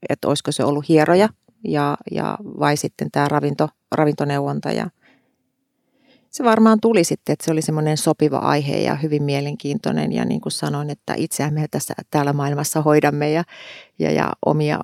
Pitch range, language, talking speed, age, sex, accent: 145-190 Hz, Finnish, 165 wpm, 40-59, female, native